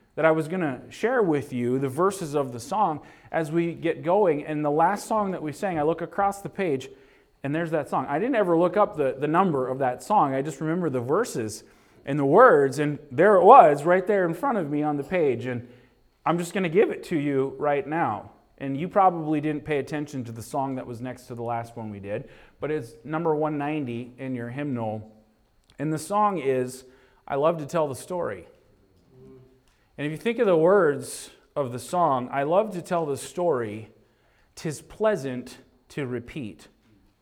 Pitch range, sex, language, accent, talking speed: 130-180 Hz, male, English, American, 210 wpm